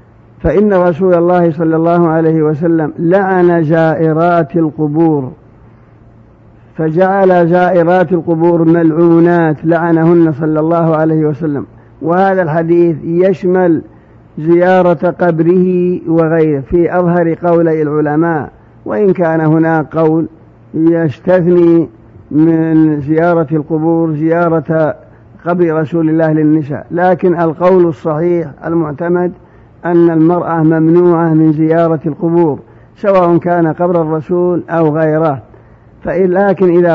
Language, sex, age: Arabic, male, 50-69